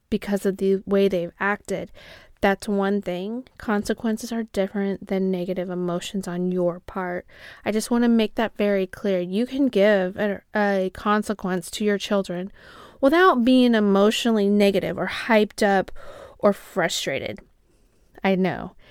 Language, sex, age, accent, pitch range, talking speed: English, female, 30-49, American, 195-245 Hz, 145 wpm